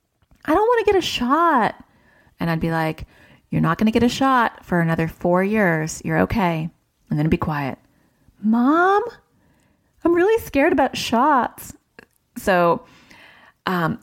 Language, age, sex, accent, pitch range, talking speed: English, 30-49, female, American, 160-235 Hz, 165 wpm